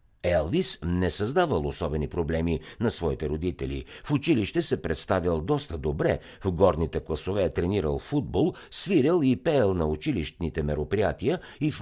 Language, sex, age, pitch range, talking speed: Bulgarian, male, 60-79, 75-105 Hz, 135 wpm